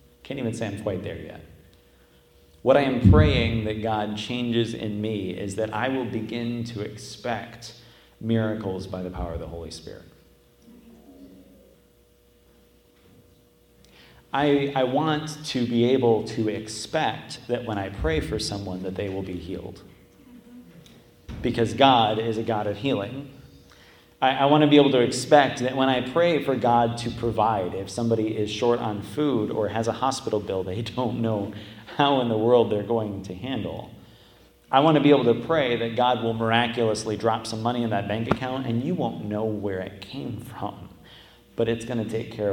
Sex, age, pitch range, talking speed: male, 30-49, 100-125 Hz, 180 wpm